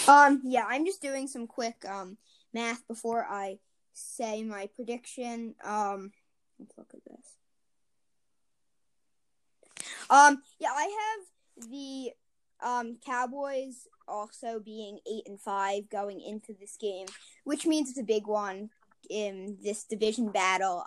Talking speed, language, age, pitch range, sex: 130 wpm, English, 10-29, 205-260 Hz, female